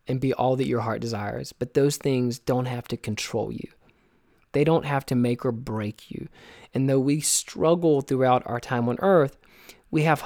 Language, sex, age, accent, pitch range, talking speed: English, male, 20-39, American, 120-145 Hz, 200 wpm